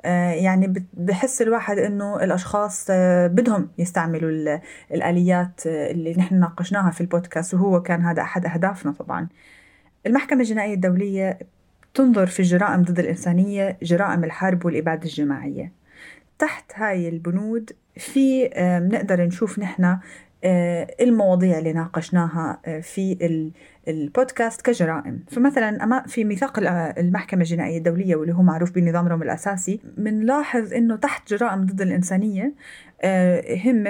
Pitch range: 170-205 Hz